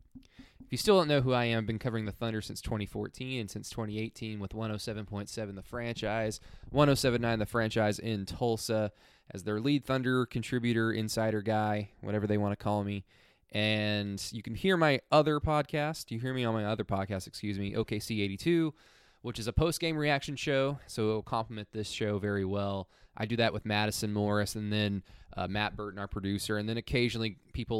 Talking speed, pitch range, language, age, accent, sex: 190 wpm, 105-120 Hz, English, 20-39, American, male